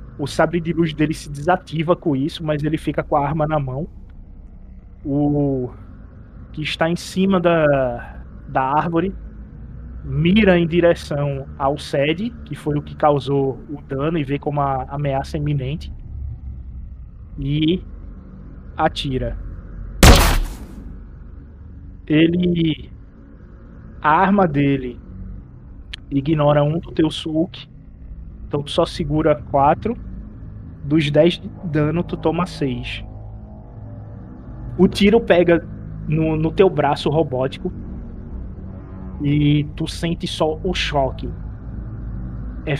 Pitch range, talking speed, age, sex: 95-160 Hz, 115 wpm, 20-39, male